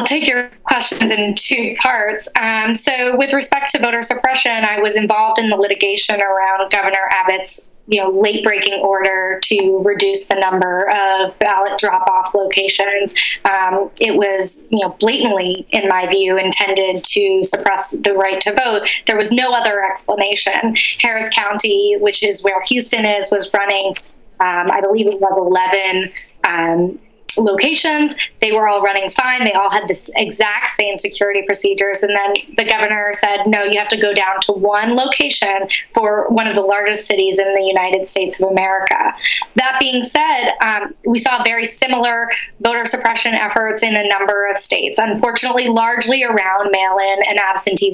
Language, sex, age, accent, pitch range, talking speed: English, female, 20-39, American, 195-235 Hz, 170 wpm